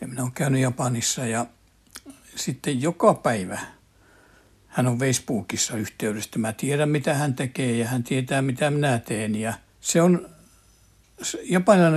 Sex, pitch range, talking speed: male, 110-150 Hz, 140 wpm